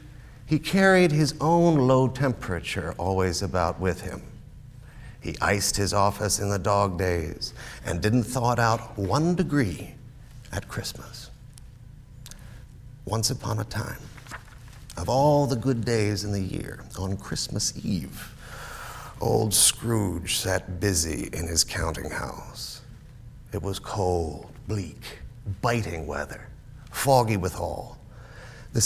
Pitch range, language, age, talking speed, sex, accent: 100-130 Hz, English, 50-69, 125 wpm, male, American